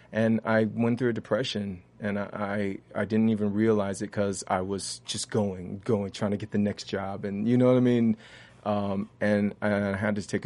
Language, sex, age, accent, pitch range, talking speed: English, male, 20-39, American, 95-110 Hz, 220 wpm